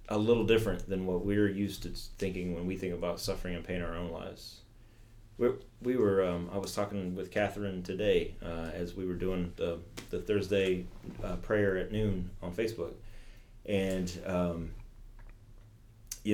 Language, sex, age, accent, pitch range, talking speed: English, male, 30-49, American, 90-110 Hz, 175 wpm